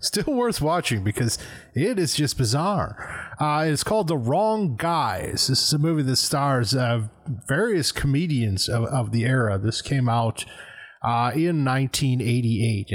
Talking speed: 155 wpm